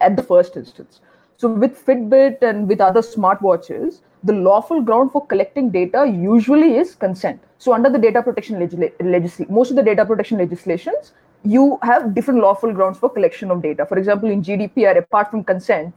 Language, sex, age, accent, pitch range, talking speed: English, female, 20-39, Indian, 190-245 Hz, 185 wpm